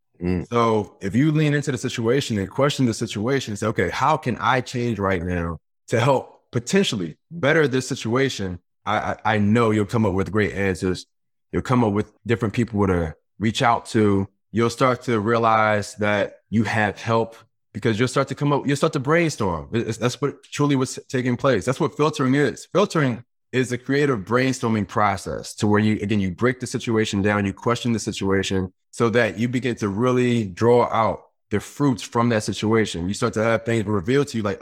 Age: 20-39